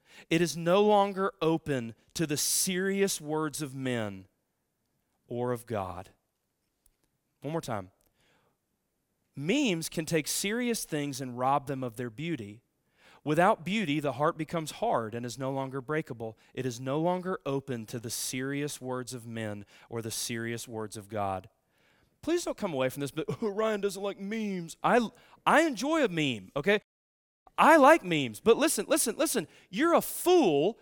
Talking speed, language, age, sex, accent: 165 wpm, English, 30-49, male, American